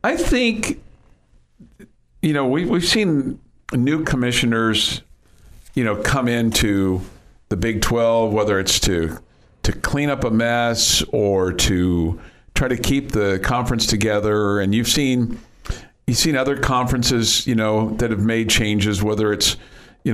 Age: 50-69